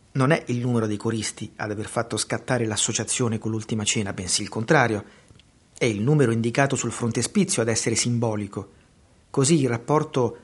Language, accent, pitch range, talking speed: Italian, native, 110-145 Hz, 165 wpm